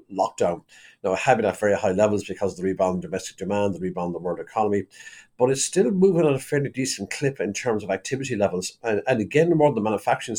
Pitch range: 105-155 Hz